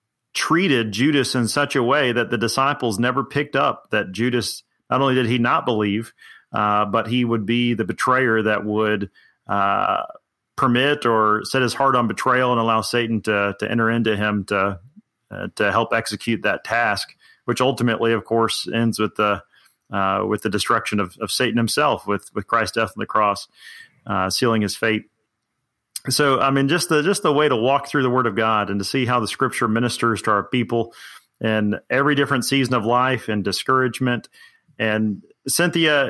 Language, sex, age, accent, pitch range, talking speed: English, male, 30-49, American, 110-135 Hz, 190 wpm